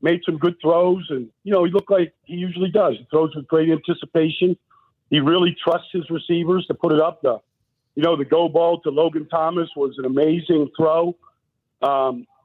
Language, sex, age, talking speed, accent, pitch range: English, male, 50-69, 200 wpm, American, 150-180 Hz